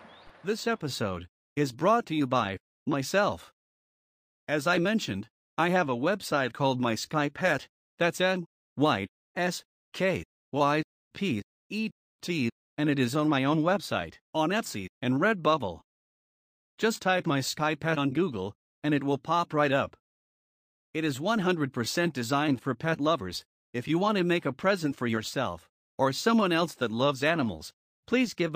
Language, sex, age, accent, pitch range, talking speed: English, male, 50-69, American, 130-170 Hz, 160 wpm